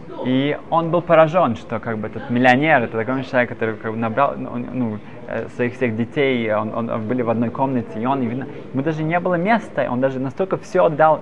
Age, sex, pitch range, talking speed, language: 20-39, male, 125-165 Hz, 220 wpm, Russian